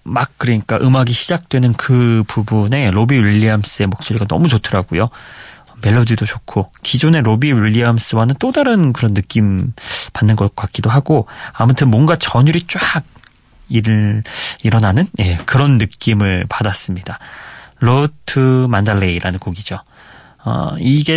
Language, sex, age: Korean, male, 30-49